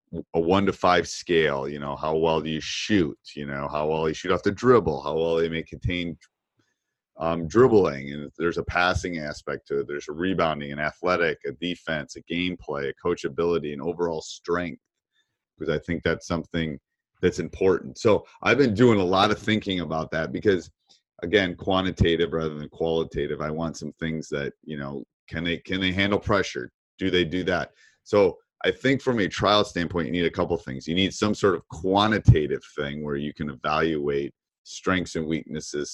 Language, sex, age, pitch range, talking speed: English, male, 30-49, 75-95 Hz, 195 wpm